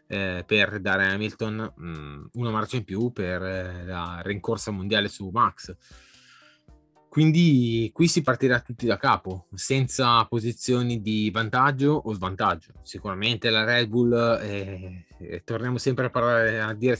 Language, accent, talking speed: Italian, native, 150 wpm